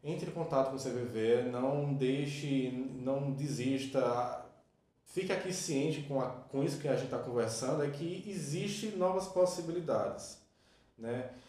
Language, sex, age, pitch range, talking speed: Portuguese, male, 20-39, 130-160 Hz, 145 wpm